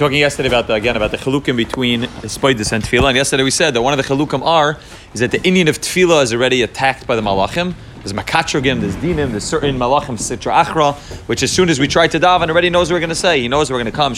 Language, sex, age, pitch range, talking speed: English, male, 30-49, 130-165 Hz, 270 wpm